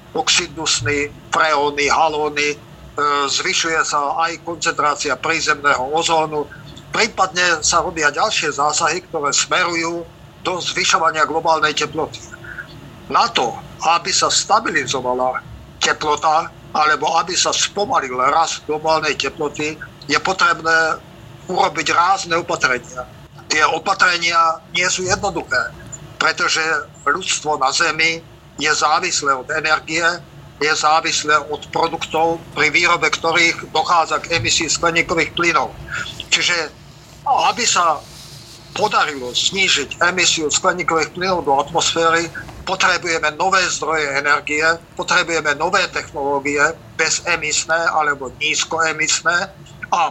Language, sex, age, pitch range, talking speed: Slovak, male, 50-69, 145-170 Hz, 100 wpm